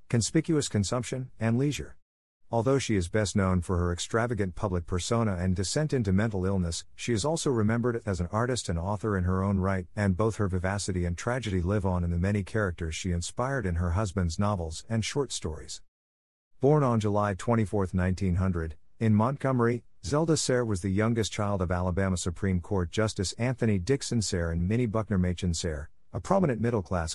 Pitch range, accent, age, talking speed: 90-115 Hz, American, 50-69, 180 wpm